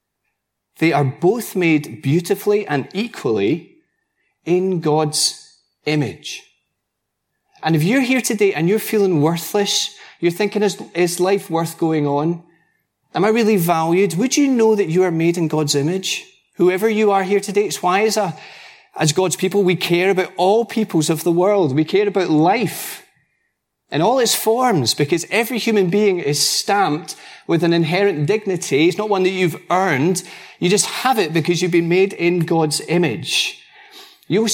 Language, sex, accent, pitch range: English, male, British, 155-205 Hz